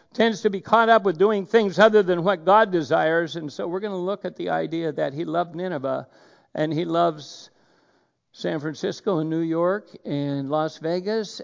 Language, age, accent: English, 60-79, American